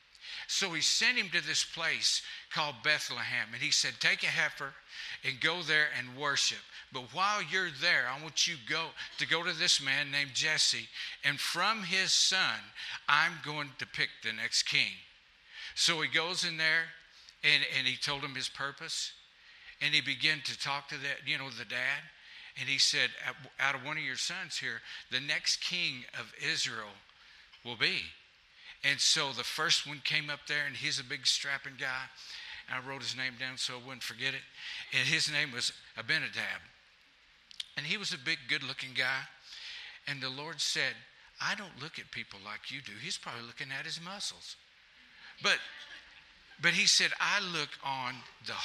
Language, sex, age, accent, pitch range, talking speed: English, male, 60-79, American, 135-165 Hz, 180 wpm